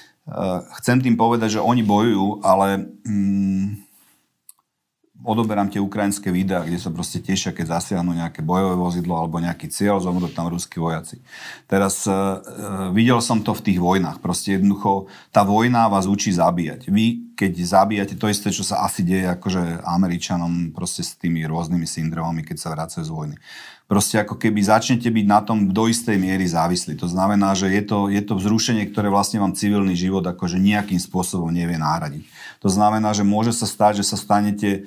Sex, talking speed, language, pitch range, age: male, 180 wpm, Slovak, 95-110 Hz, 40-59